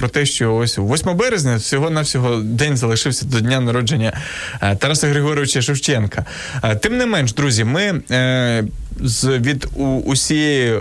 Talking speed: 140 wpm